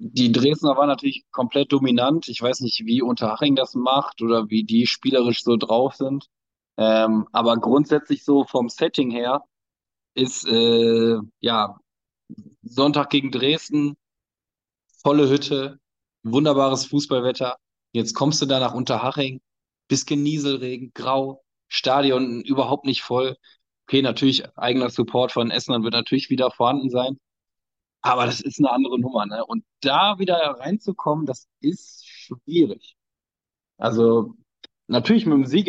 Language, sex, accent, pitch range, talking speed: German, male, German, 115-140 Hz, 135 wpm